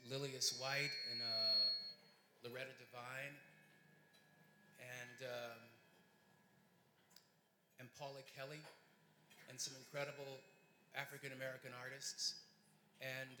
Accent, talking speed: American, 75 wpm